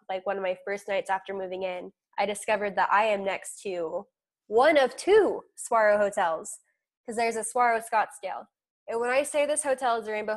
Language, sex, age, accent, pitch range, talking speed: English, female, 10-29, American, 195-250 Hz, 210 wpm